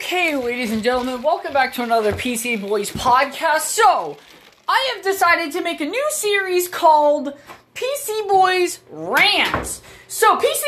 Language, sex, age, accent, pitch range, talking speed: English, female, 20-39, American, 280-390 Hz, 145 wpm